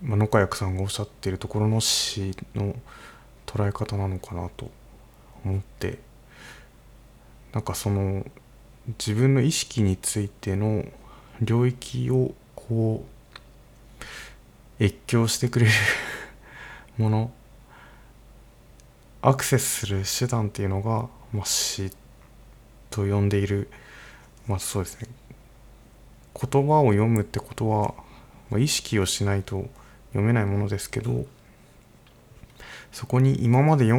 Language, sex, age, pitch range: Japanese, male, 20-39, 100-125 Hz